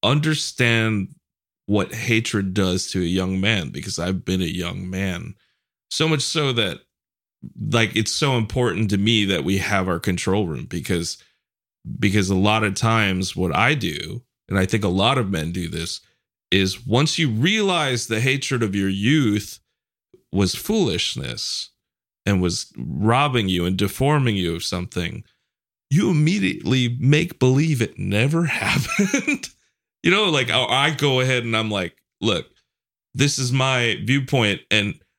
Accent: American